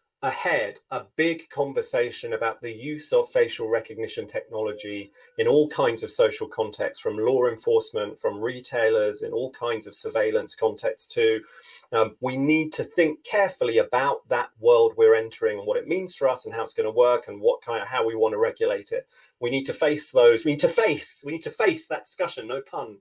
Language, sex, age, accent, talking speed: English, male, 30-49, British, 205 wpm